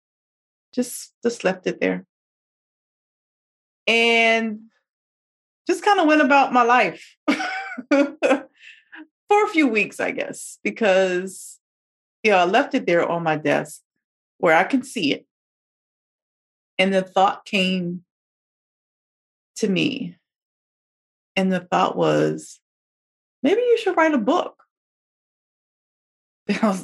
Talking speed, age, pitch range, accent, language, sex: 115 wpm, 30-49, 165-260 Hz, American, English, female